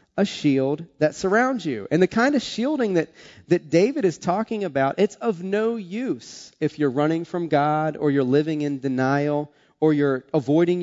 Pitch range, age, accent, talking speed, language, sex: 120-155 Hz, 30-49, American, 185 wpm, English, male